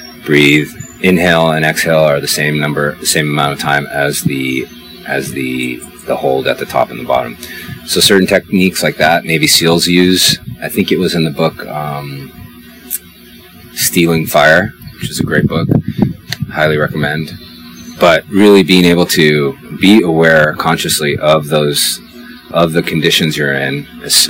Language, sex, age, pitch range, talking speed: English, male, 30-49, 70-80 Hz, 165 wpm